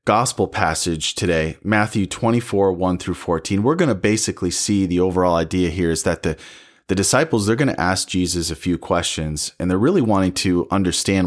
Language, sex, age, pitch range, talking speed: English, male, 30-49, 85-105 Hz, 190 wpm